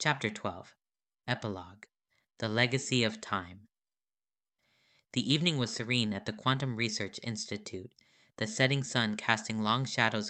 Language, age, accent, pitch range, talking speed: English, 20-39, American, 105-125 Hz, 130 wpm